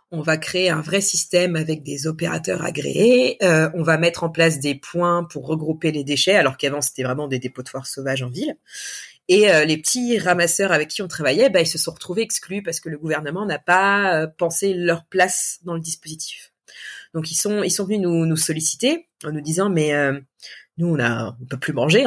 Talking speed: 225 wpm